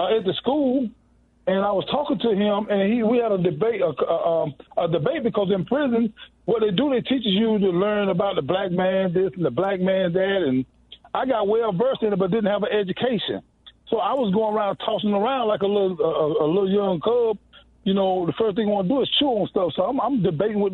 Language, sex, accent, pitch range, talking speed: English, male, American, 195-240 Hz, 250 wpm